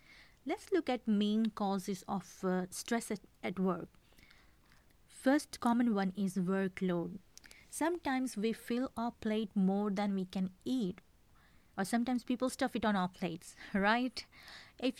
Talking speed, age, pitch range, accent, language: 140 wpm, 20-39, 190-250 Hz, Indian, English